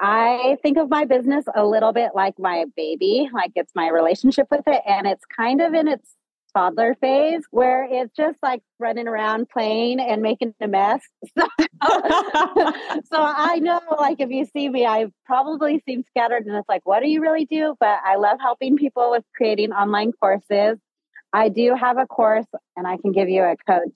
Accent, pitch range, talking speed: American, 175-255 Hz, 195 wpm